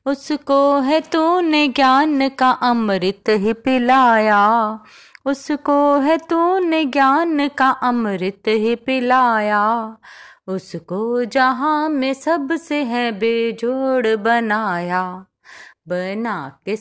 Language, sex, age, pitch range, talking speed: Hindi, female, 30-49, 205-265 Hz, 80 wpm